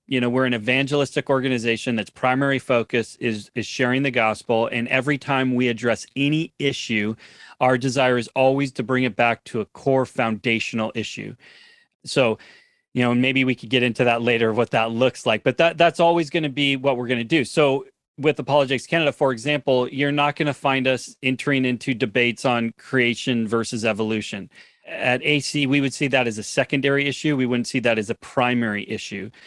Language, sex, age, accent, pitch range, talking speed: English, male, 30-49, American, 115-140 Hz, 195 wpm